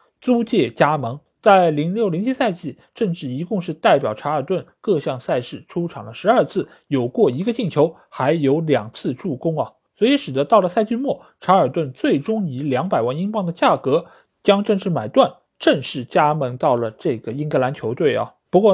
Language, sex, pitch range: Chinese, male, 145-220 Hz